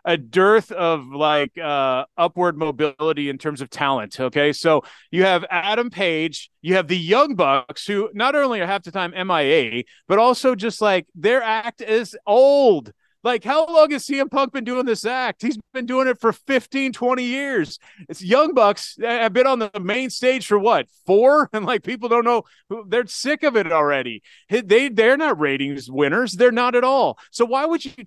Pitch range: 155-240 Hz